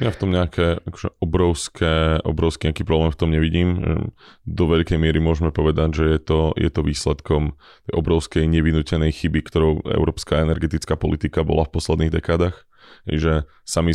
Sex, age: male, 20-39